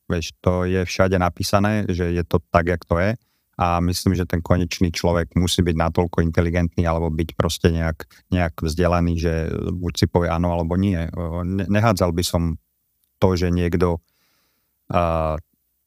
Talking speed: 160 wpm